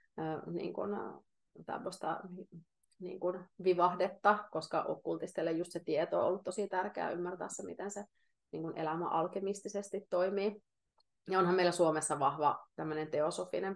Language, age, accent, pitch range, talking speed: Finnish, 30-49, native, 155-190 Hz, 120 wpm